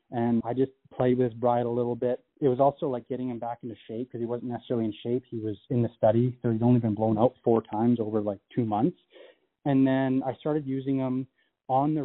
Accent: American